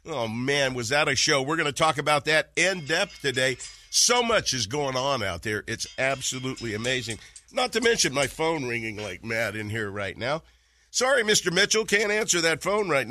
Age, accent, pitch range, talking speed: 50-69, American, 115-170 Hz, 205 wpm